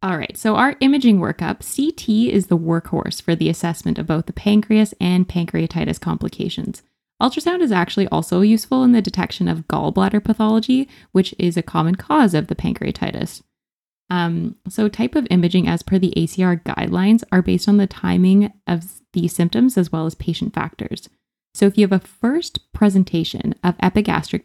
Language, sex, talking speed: English, female, 170 wpm